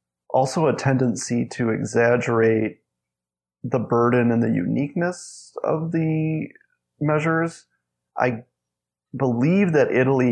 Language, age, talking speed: English, 30-49, 100 wpm